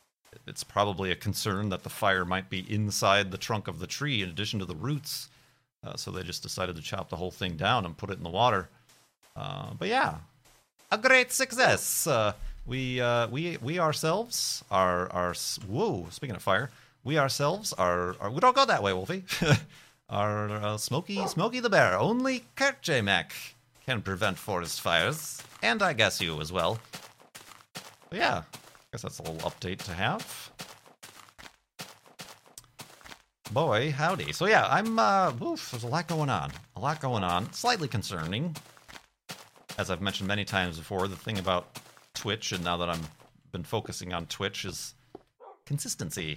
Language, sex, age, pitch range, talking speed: English, male, 30-49, 95-150 Hz, 170 wpm